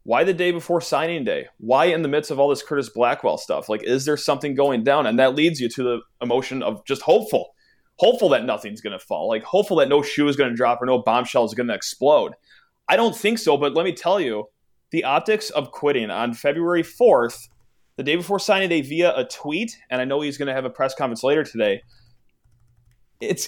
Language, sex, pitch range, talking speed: English, male, 125-170 Hz, 235 wpm